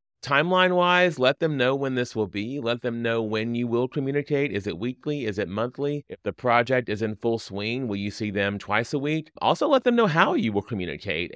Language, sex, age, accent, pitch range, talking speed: English, male, 30-49, American, 100-145 Hz, 225 wpm